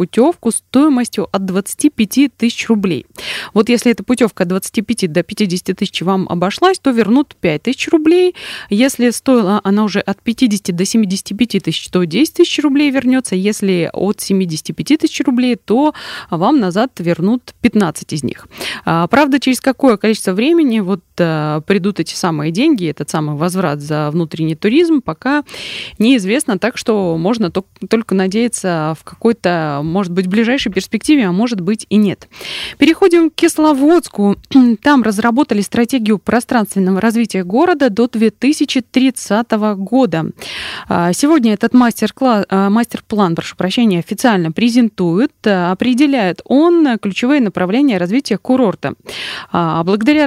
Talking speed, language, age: 130 wpm, Russian, 20-39